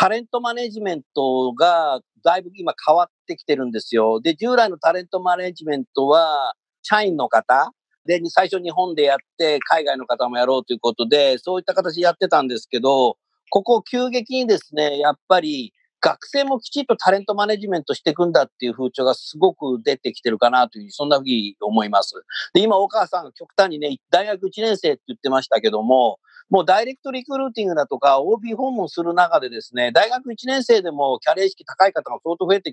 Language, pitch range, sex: Japanese, 150-245 Hz, male